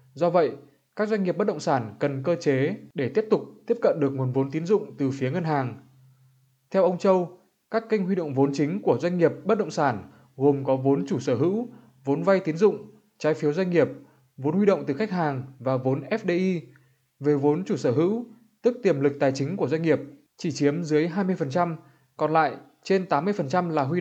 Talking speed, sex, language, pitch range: 215 wpm, male, Vietnamese, 140-190 Hz